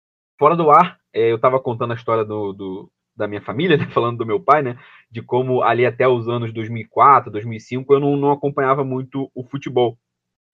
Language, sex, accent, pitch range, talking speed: Portuguese, male, Brazilian, 120-170 Hz, 200 wpm